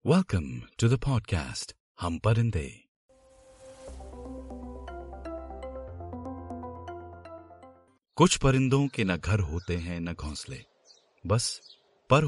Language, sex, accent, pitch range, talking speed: Hindi, male, native, 85-120 Hz, 80 wpm